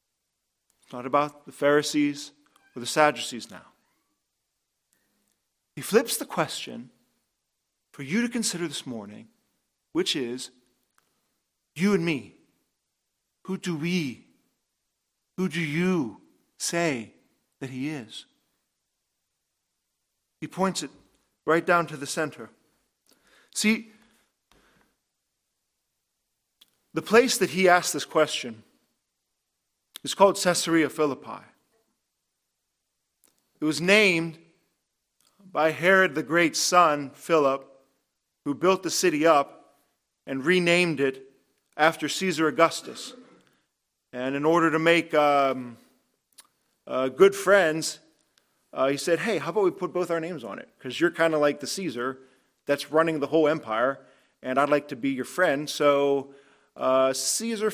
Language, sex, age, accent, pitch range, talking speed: English, male, 40-59, American, 140-180 Hz, 125 wpm